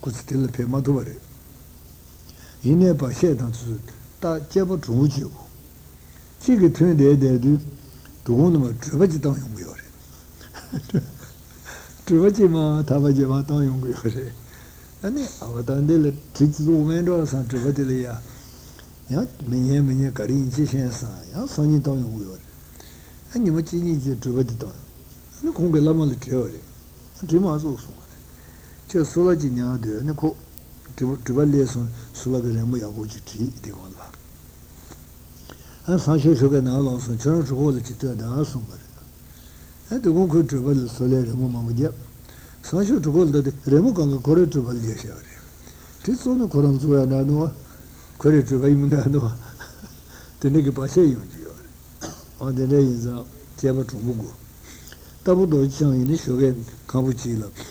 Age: 60-79